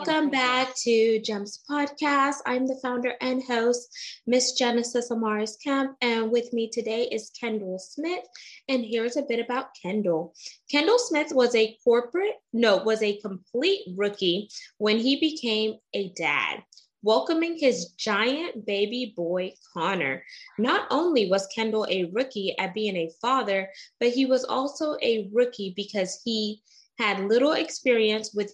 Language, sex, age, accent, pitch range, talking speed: English, female, 20-39, American, 205-265 Hz, 145 wpm